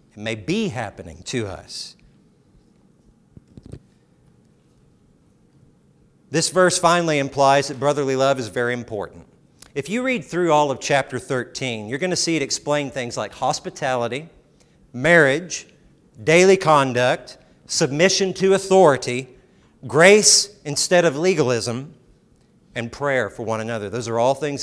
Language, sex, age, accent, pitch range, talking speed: English, male, 50-69, American, 125-175 Hz, 120 wpm